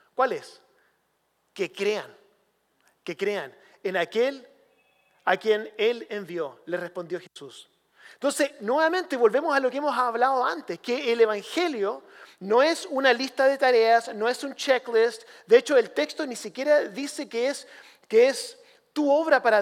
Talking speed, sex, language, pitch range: 155 wpm, male, English, 200-295 Hz